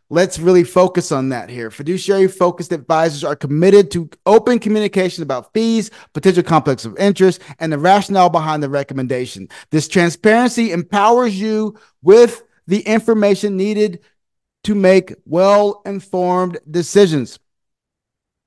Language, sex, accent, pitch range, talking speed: English, male, American, 165-215 Hz, 120 wpm